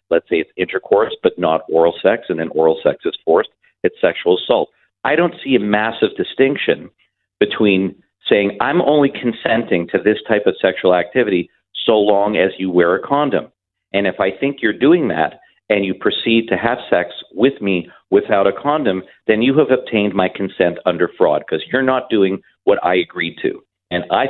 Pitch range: 95-130 Hz